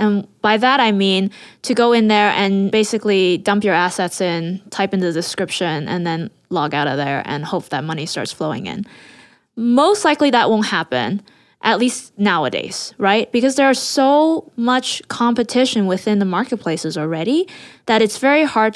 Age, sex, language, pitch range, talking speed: 20-39, female, English, 190-240 Hz, 175 wpm